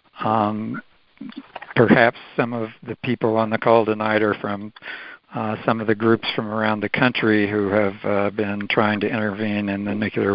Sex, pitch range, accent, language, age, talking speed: male, 105-115 Hz, American, English, 60-79, 180 wpm